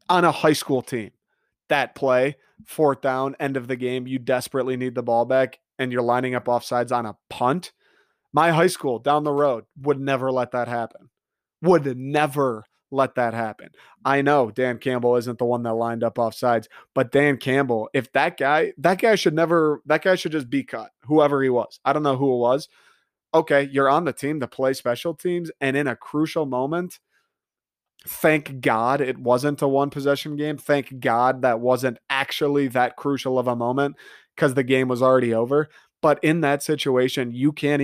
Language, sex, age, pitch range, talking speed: English, male, 30-49, 125-160 Hz, 195 wpm